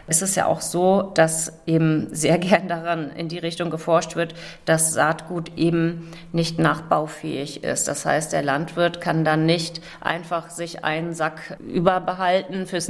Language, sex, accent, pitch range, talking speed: German, female, German, 155-175 Hz, 160 wpm